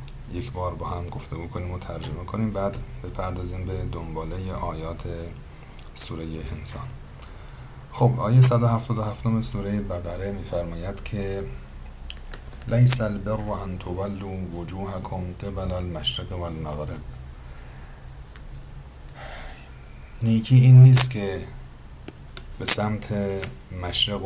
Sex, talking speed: male, 90 wpm